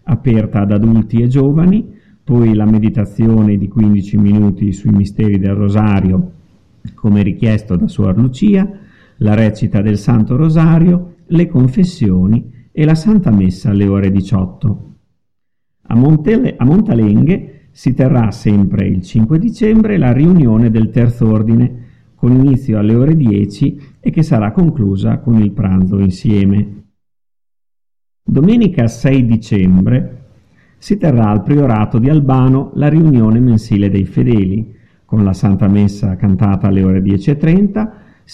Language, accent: Italian, native